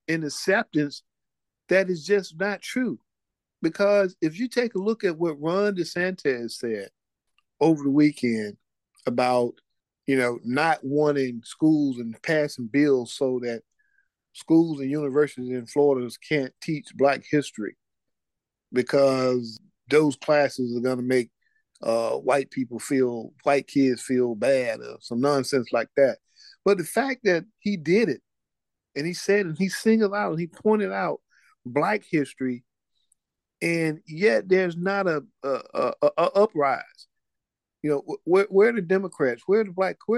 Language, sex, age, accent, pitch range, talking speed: English, male, 50-69, American, 135-200 Hz, 155 wpm